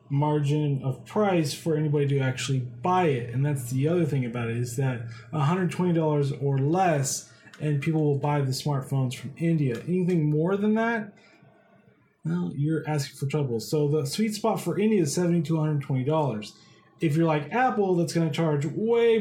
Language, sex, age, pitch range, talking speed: English, male, 20-39, 140-175 Hz, 185 wpm